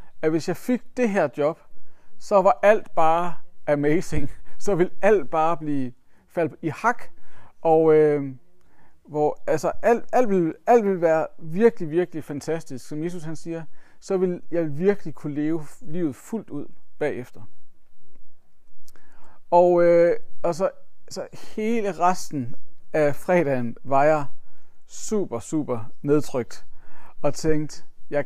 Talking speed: 135 wpm